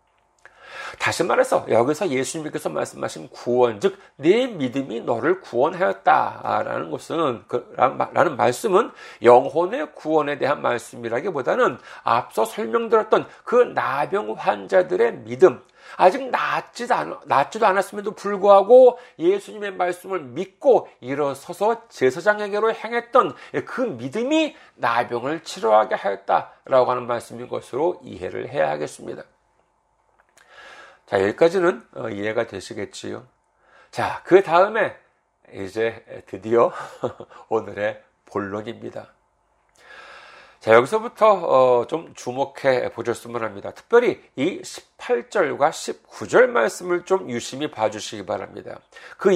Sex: male